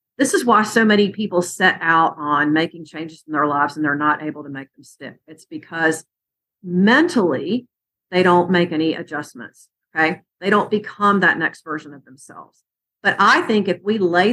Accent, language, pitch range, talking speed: American, English, 160-210 Hz, 190 wpm